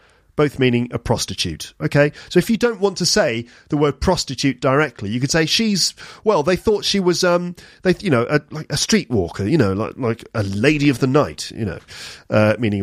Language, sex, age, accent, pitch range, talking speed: English, male, 40-59, British, 115-160 Hz, 215 wpm